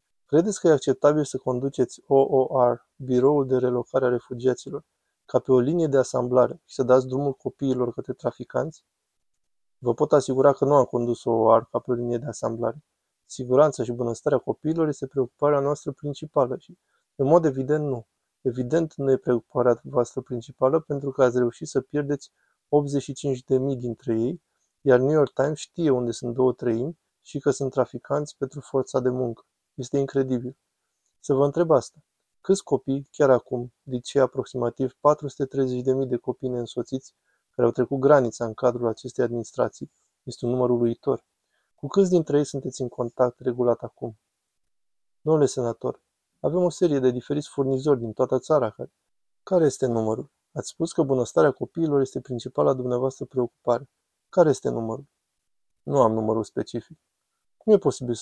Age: 20-39